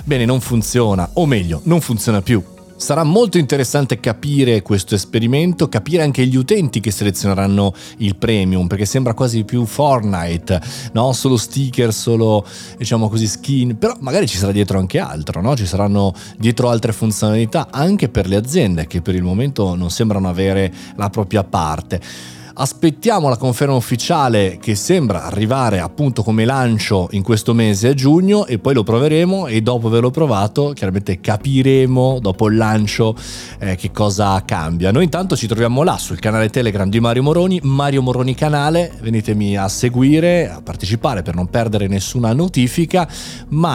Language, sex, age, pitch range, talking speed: Italian, male, 30-49, 100-135 Hz, 160 wpm